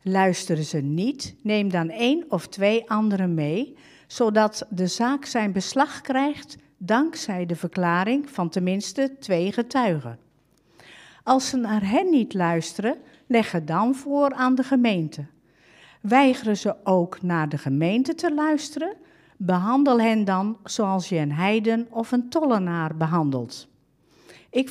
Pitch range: 175-265 Hz